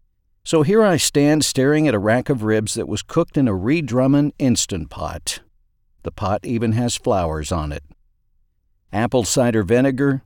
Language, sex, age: English, male, 50-69